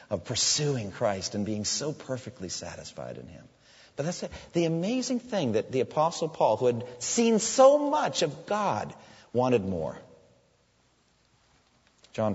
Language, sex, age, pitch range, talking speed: English, male, 40-59, 100-165 Hz, 140 wpm